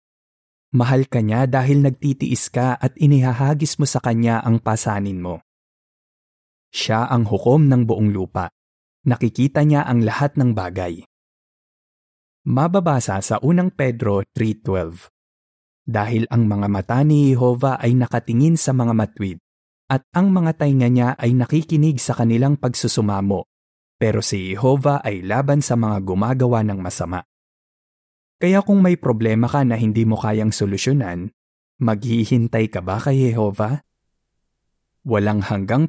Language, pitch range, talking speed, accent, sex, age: Filipino, 100-135 Hz, 130 wpm, native, male, 20-39